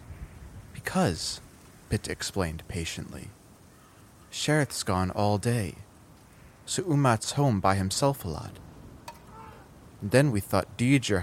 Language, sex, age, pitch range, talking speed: English, male, 30-49, 85-110 Hz, 110 wpm